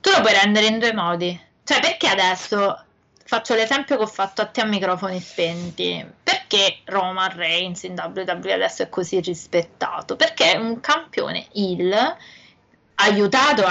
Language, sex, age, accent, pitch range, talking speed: Italian, female, 20-39, native, 185-230 Hz, 155 wpm